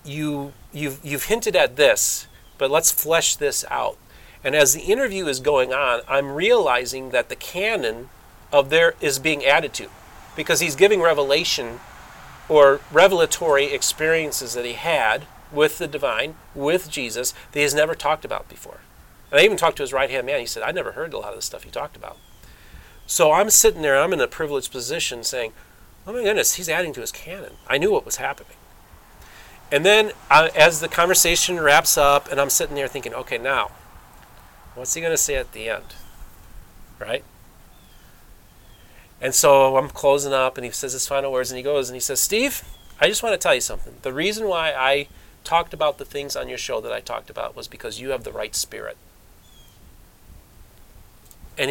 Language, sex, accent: English, male, American